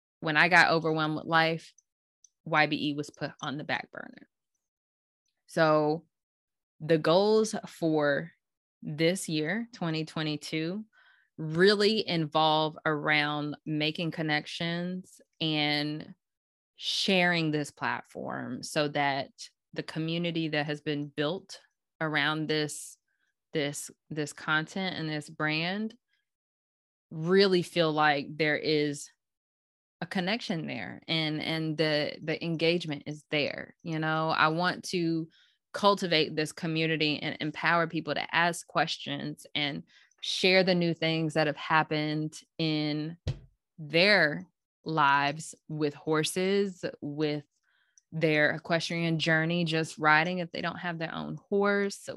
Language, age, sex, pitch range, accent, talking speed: English, 20-39, female, 150-170 Hz, American, 115 wpm